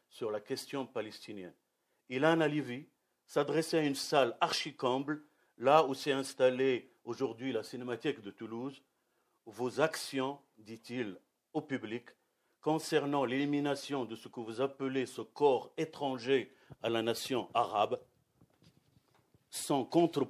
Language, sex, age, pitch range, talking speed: French, male, 50-69, 120-145 Hz, 125 wpm